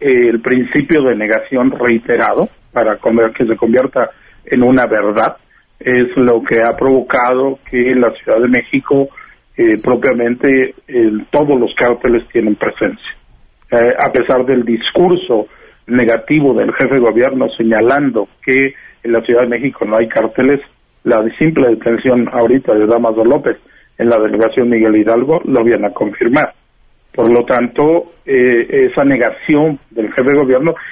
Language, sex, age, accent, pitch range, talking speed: Spanish, male, 50-69, Mexican, 115-145 Hz, 150 wpm